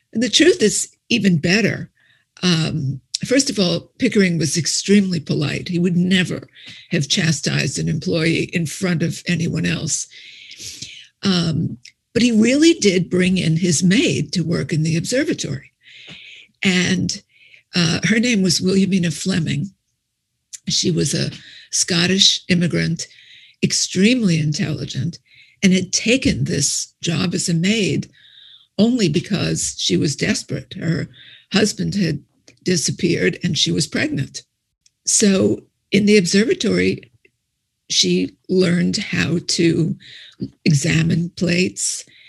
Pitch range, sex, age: 165-195 Hz, female, 50-69